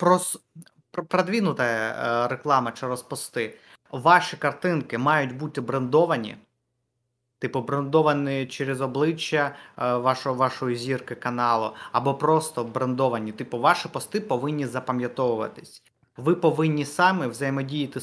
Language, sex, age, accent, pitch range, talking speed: Ukrainian, male, 20-39, native, 130-160 Hz, 100 wpm